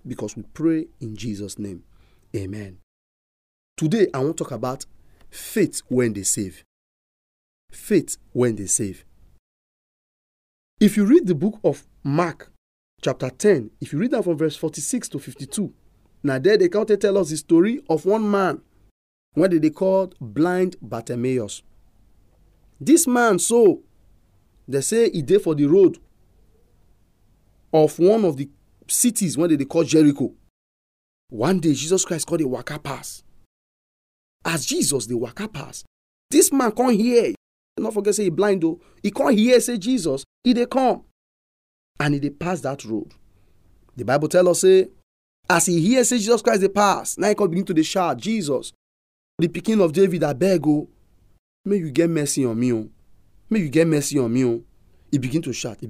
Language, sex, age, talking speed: English, male, 40-59, 170 wpm